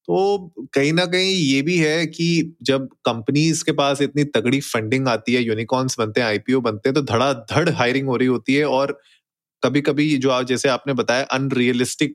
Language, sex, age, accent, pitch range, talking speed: Hindi, male, 30-49, native, 120-150 Hz, 190 wpm